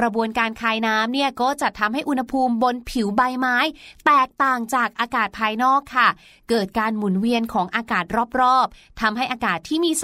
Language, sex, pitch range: Thai, female, 230-305 Hz